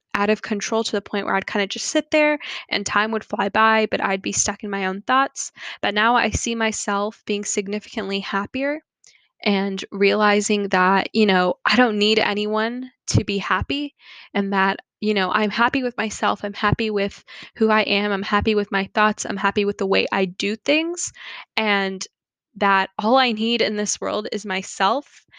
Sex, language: female, English